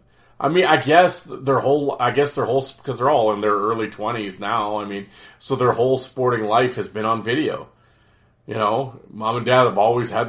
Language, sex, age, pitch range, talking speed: English, male, 30-49, 105-130 Hz, 215 wpm